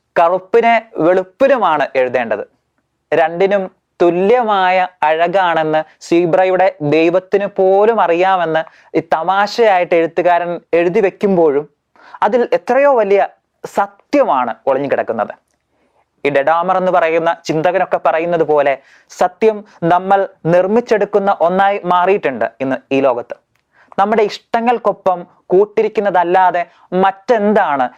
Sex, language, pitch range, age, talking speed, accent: male, Malayalam, 160-195 Hz, 20-39, 80 wpm, native